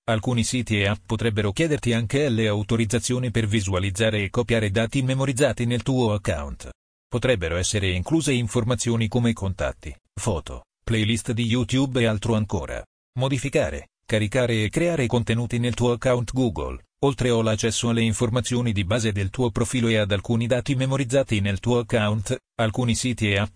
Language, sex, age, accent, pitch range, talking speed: Italian, male, 40-59, native, 105-125 Hz, 155 wpm